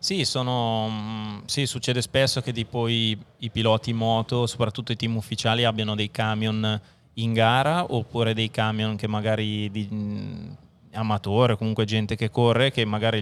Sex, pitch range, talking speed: male, 105-120 Hz, 145 wpm